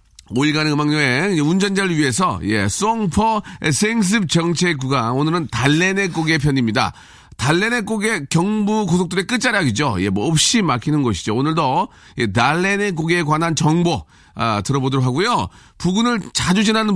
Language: Korean